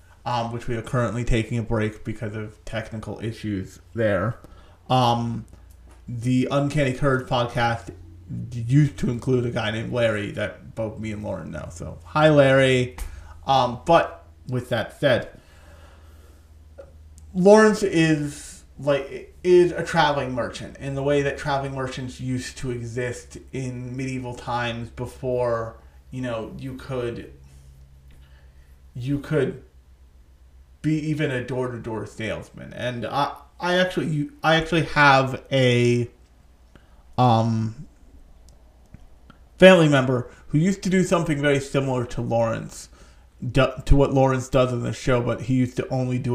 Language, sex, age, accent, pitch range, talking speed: English, male, 30-49, American, 85-135 Hz, 135 wpm